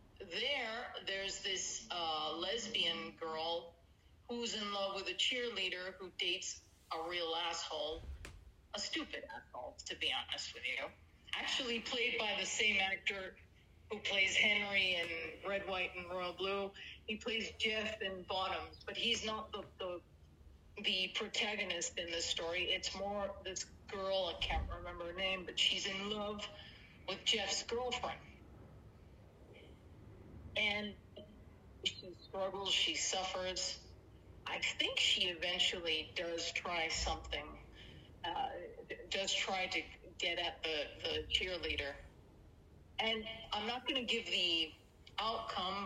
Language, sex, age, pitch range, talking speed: English, female, 40-59, 170-225 Hz, 130 wpm